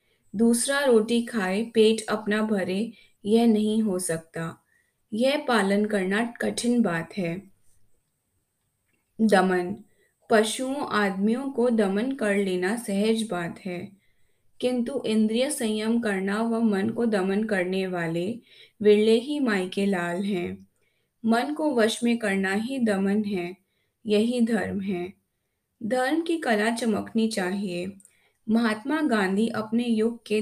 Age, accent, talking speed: 20-39, native, 120 wpm